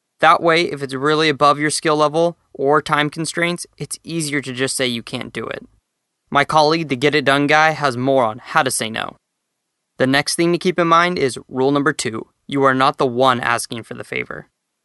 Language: English